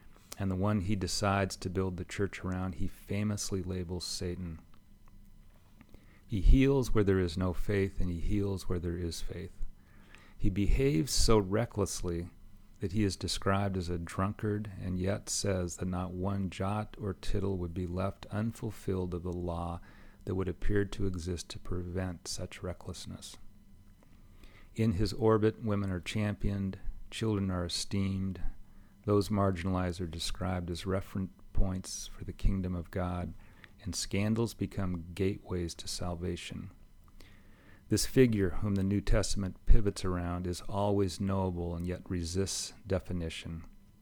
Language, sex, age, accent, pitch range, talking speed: English, male, 40-59, American, 90-100 Hz, 145 wpm